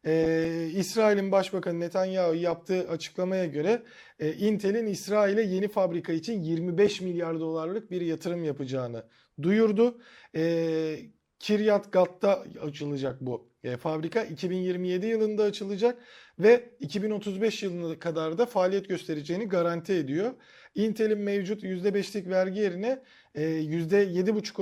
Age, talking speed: 40-59, 110 wpm